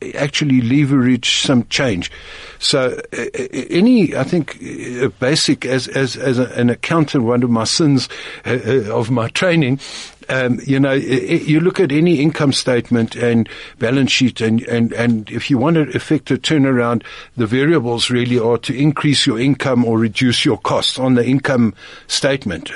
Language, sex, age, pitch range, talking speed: English, male, 60-79, 115-140 Hz, 170 wpm